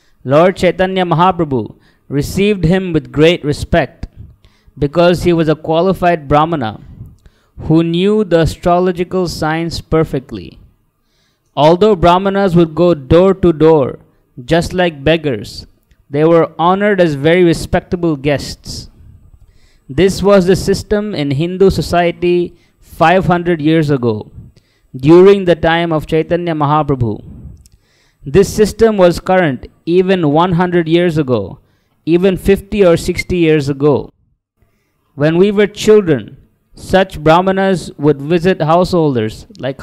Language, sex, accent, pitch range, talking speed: English, male, Indian, 145-180 Hz, 115 wpm